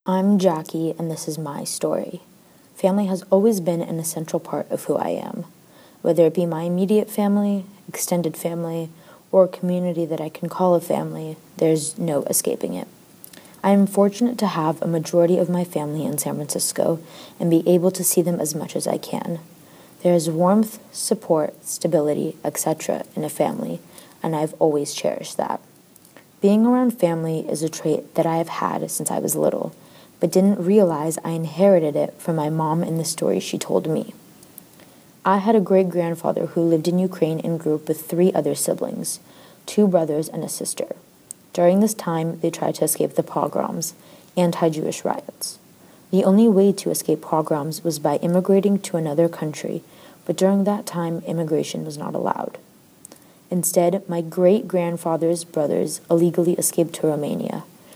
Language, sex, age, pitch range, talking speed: English, female, 20-39, 160-190 Hz, 170 wpm